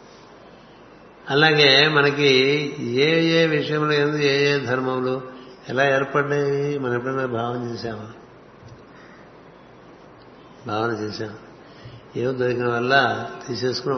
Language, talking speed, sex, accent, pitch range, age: Telugu, 90 wpm, male, native, 125-145 Hz, 60-79